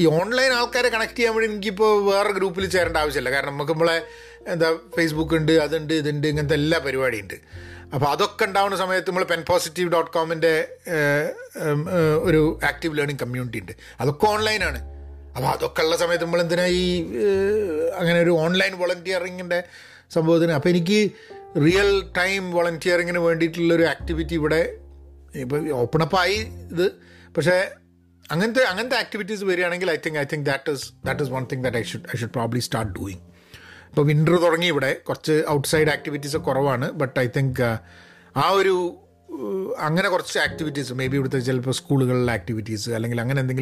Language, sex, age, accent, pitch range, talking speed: Malayalam, male, 30-49, native, 135-185 Hz, 160 wpm